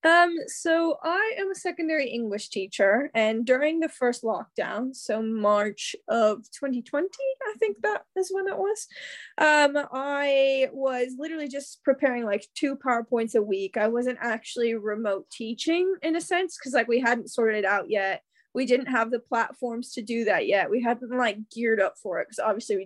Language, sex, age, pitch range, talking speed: English, female, 10-29, 225-315 Hz, 185 wpm